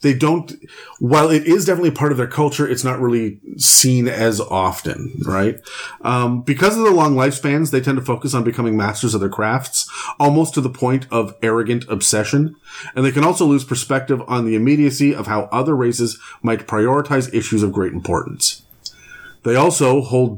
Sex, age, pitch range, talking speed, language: male, 30-49, 115-145 Hz, 185 wpm, English